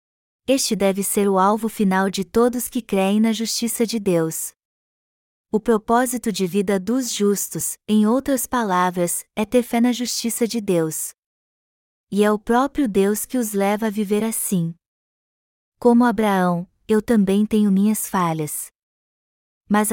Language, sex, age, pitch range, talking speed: Portuguese, female, 20-39, 190-230 Hz, 150 wpm